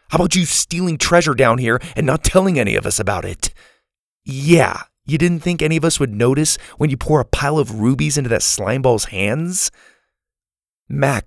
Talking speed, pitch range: 190 wpm, 120-175 Hz